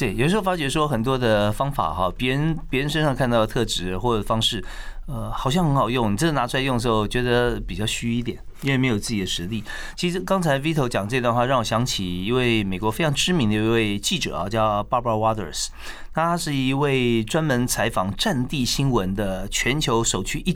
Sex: male